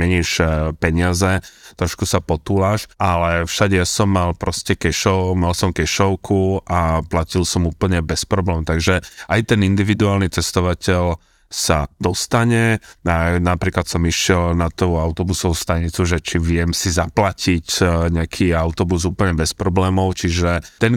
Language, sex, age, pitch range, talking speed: Slovak, male, 30-49, 85-95 Hz, 130 wpm